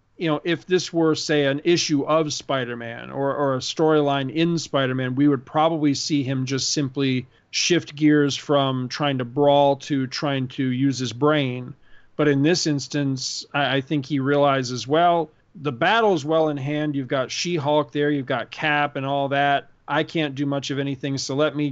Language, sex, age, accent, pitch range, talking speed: English, male, 40-59, American, 135-155 Hz, 190 wpm